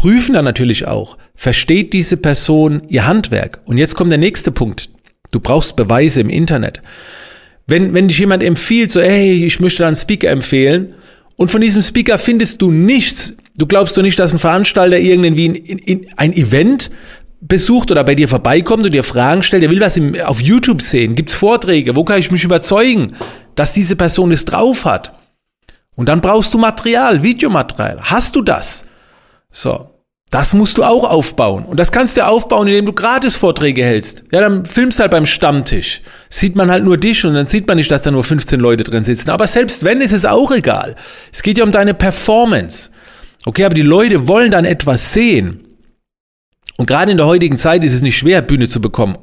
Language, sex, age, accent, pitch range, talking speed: German, male, 40-59, German, 150-205 Hz, 195 wpm